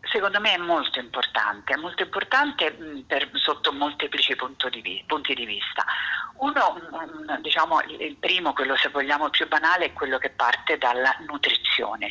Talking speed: 145 wpm